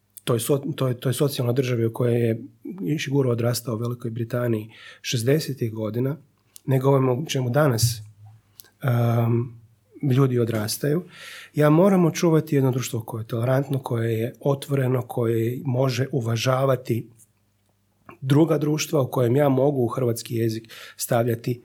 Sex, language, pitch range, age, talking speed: male, Croatian, 110-140 Hz, 30-49, 125 wpm